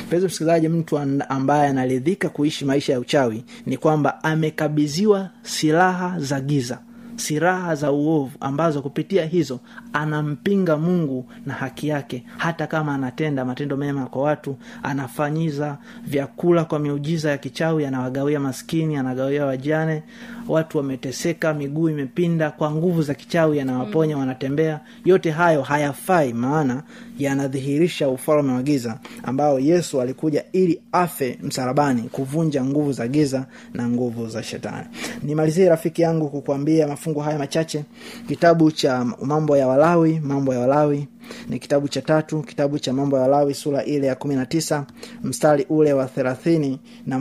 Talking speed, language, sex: 135 wpm, Swahili, male